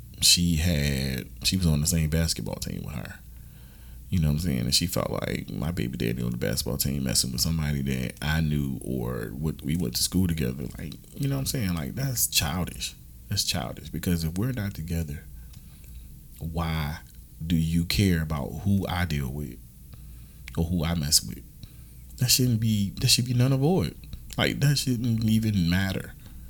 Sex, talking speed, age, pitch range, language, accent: male, 190 wpm, 30-49, 70-90 Hz, English, American